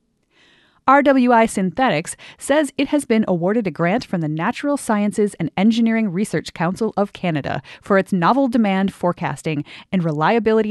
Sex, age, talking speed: female, 30-49, 145 wpm